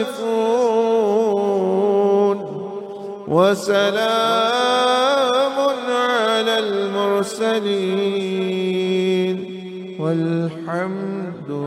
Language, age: Danish, 50-69